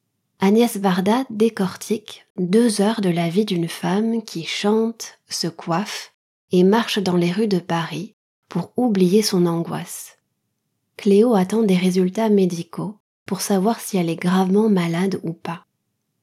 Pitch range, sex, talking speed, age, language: 175-215 Hz, female, 145 wpm, 20-39, French